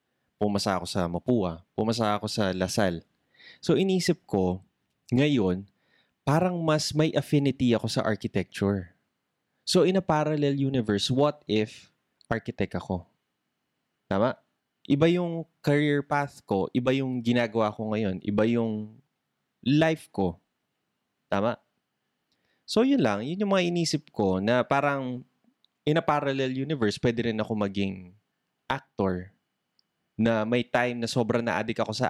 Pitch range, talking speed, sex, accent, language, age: 105-145 Hz, 135 wpm, male, native, Filipino, 20-39